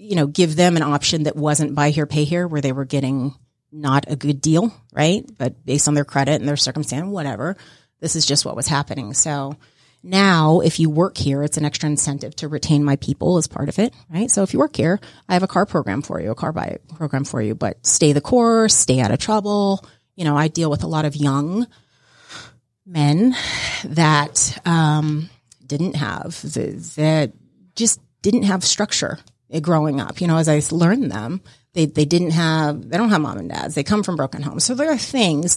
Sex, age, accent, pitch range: female, 30-49, American, 145-180 Hz